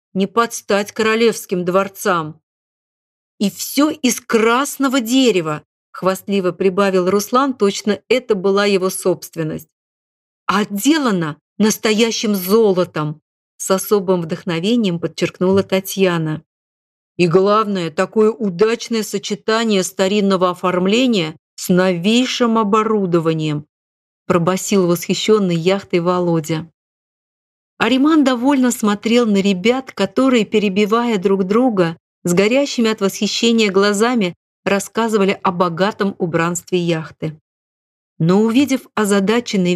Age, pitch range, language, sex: 40-59, 180-220 Hz, Russian, female